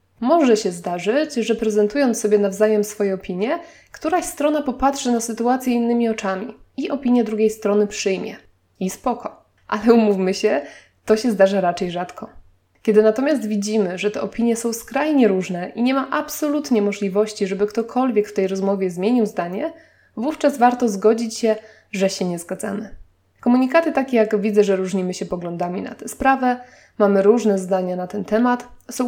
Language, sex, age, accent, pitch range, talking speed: Polish, female, 20-39, native, 205-255 Hz, 160 wpm